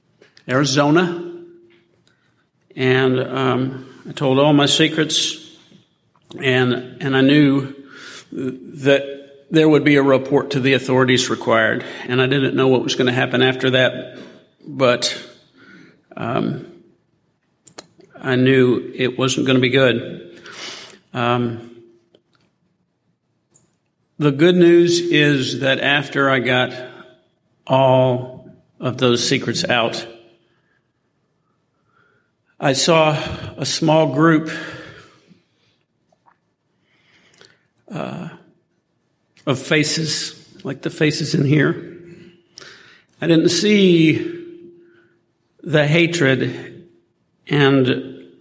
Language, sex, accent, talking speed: English, male, American, 95 wpm